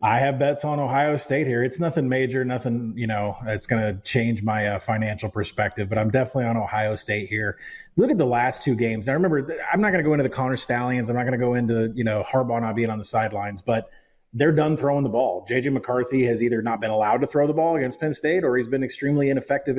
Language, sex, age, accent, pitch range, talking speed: English, male, 30-49, American, 115-145 Hz, 255 wpm